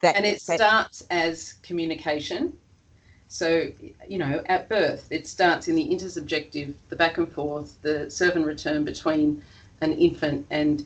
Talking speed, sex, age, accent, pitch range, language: 150 wpm, female, 40-59, Australian, 140-205 Hz, English